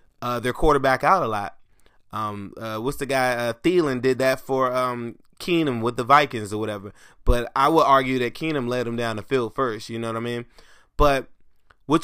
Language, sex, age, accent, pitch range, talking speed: English, male, 20-39, American, 120-155 Hz, 210 wpm